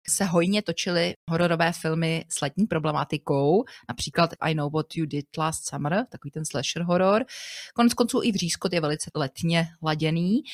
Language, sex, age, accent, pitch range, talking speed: Czech, female, 30-49, native, 165-220 Hz, 160 wpm